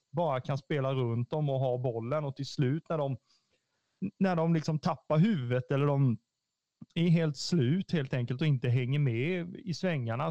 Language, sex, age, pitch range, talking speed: Swedish, male, 30-49, 125-160 Hz, 180 wpm